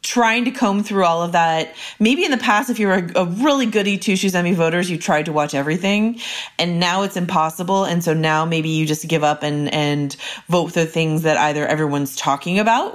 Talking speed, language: 225 wpm, English